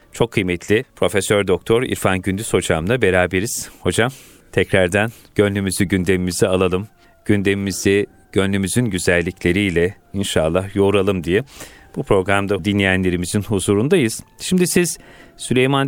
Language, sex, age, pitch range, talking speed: Turkish, male, 40-59, 95-120 Hz, 100 wpm